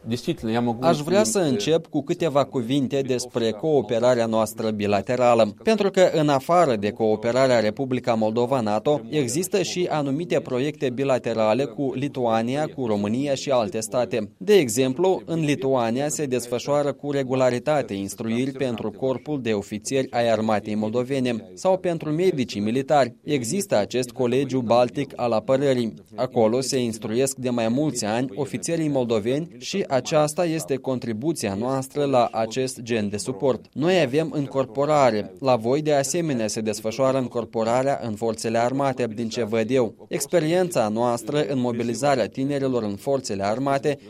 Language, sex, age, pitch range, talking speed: Romanian, male, 20-39, 115-150 Hz, 135 wpm